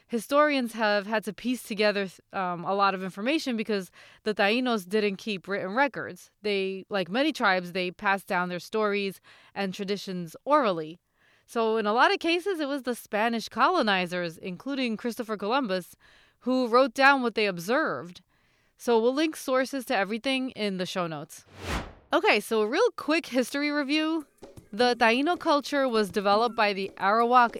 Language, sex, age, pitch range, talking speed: English, female, 20-39, 190-255 Hz, 165 wpm